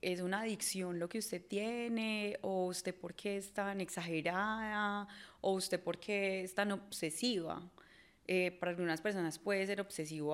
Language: Spanish